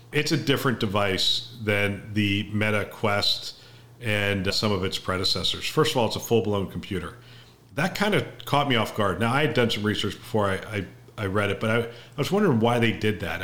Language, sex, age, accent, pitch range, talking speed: English, male, 40-59, American, 100-120 Hz, 215 wpm